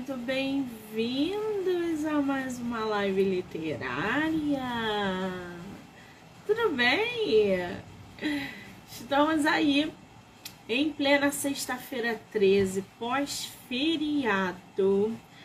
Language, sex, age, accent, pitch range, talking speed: Portuguese, female, 20-39, Brazilian, 205-285 Hz, 60 wpm